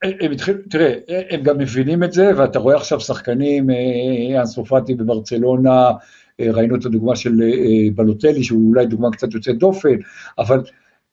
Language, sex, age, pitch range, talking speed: Hebrew, male, 50-69, 110-145 Hz, 140 wpm